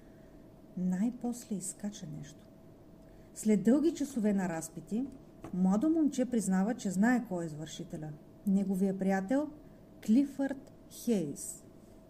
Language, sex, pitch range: Bulgarian, female, 195-265 Hz